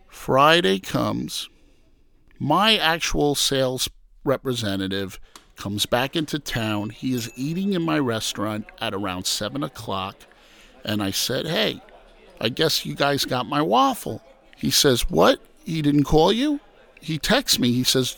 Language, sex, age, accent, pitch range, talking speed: English, male, 50-69, American, 125-195 Hz, 140 wpm